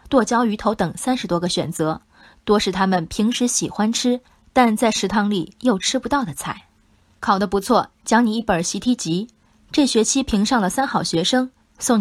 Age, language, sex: 20-39, Chinese, female